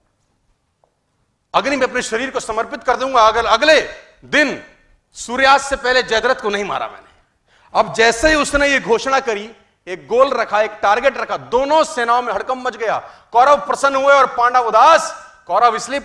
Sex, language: male, Hindi